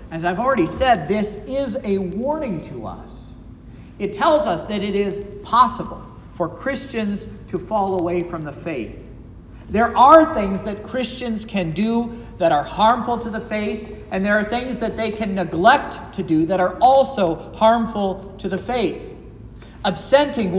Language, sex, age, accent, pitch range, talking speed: English, male, 40-59, American, 165-240 Hz, 165 wpm